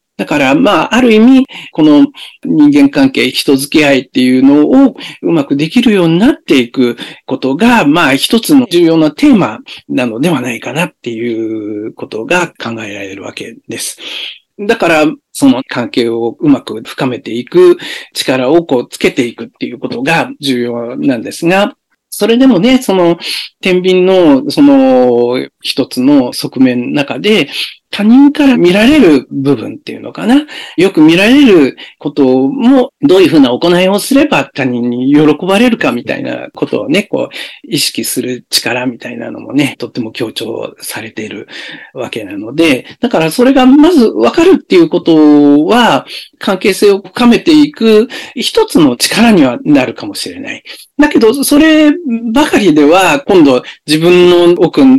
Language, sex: Japanese, male